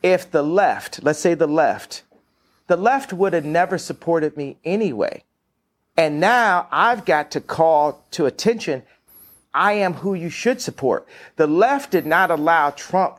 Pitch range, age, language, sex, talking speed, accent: 130-180 Hz, 40-59, English, male, 160 wpm, American